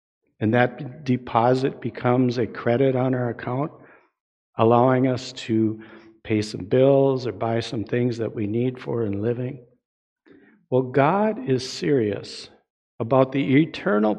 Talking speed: 135 wpm